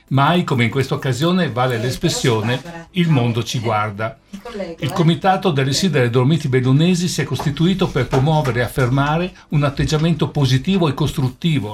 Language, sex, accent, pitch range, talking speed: Italian, male, native, 125-160 Hz, 160 wpm